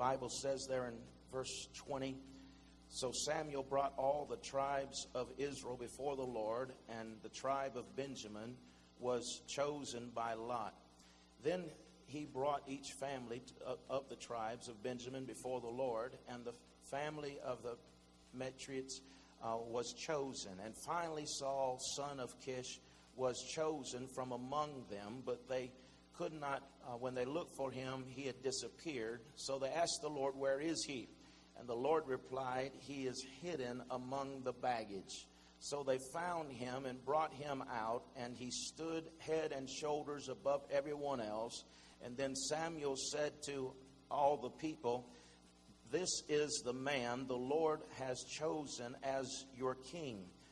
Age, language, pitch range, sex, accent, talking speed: 50-69, English, 120-140 Hz, male, American, 150 wpm